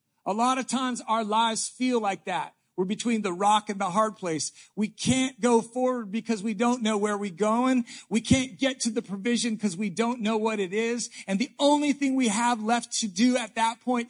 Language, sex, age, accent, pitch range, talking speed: English, male, 40-59, American, 185-240 Hz, 225 wpm